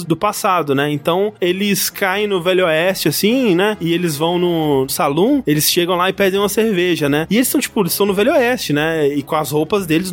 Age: 20-39